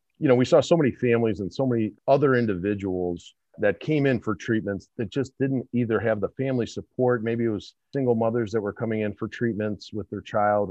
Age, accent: 40-59, American